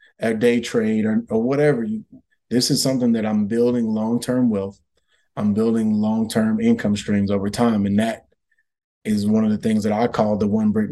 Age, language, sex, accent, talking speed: 20-39, English, male, American, 190 wpm